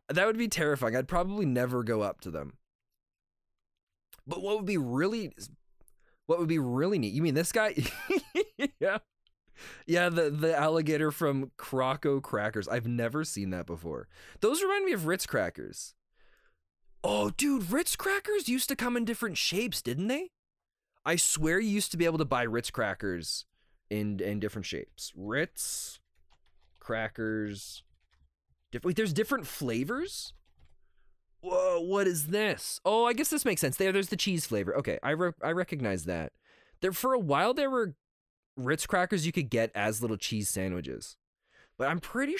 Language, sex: English, male